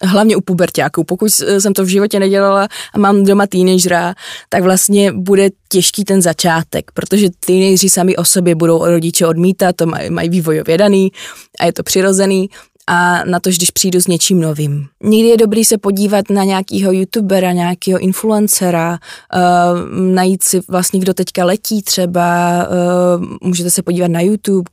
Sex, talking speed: female, 165 wpm